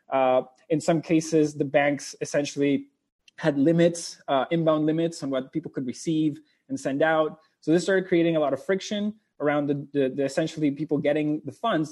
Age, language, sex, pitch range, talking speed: 20-39, English, male, 135-165 Hz, 185 wpm